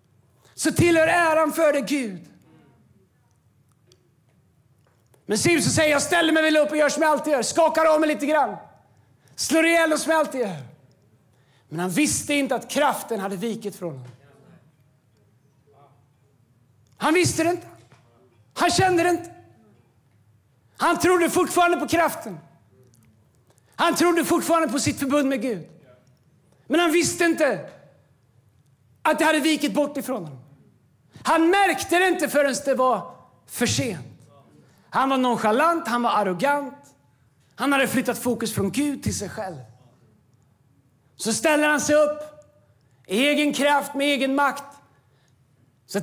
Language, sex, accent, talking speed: Swedish, male, native, 140 wpm